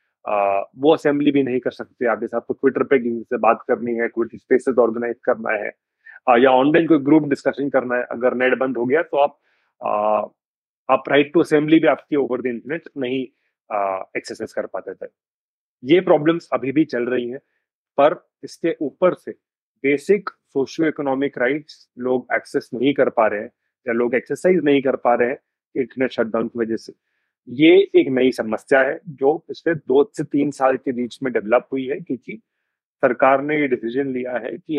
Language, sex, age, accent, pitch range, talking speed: Hindi, male, 30-49, native, 120-145 Hz, 145 wpm